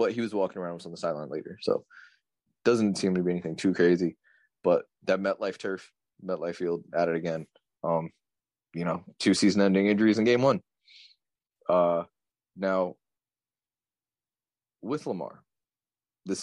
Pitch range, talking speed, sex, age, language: 95-120 Hz, 160 wpm, male, 20-39, English